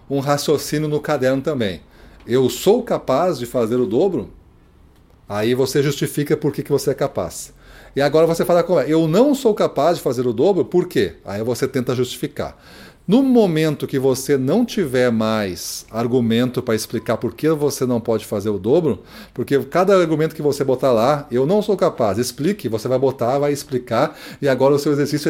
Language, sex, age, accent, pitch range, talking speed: Portuguese, male, 40-59, Brazilian, 125-165 Hz, 190 wpm